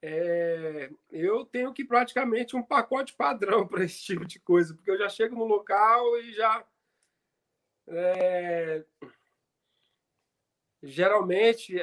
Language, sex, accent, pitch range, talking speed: Portuguese, male, Brazilian, 160-210 Hz, 105 wpm